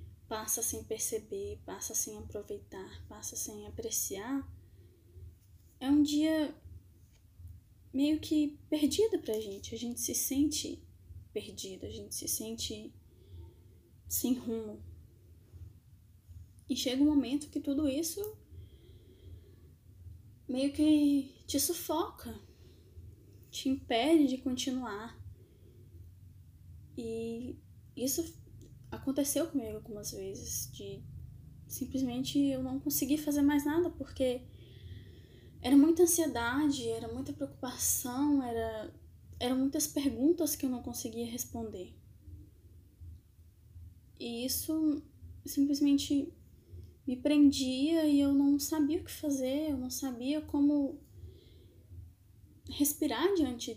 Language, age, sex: Portuguese, 10-29, female